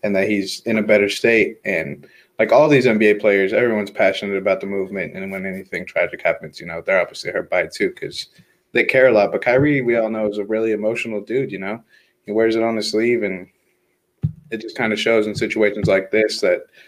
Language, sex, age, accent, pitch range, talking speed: English, male, 20-39, American, 95-110 Hz, 230 wpm